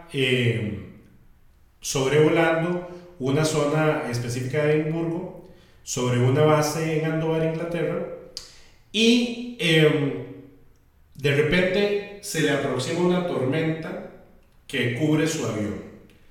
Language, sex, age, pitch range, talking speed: Spanish, male, 40-59, 130-175 Hz, 95 wpm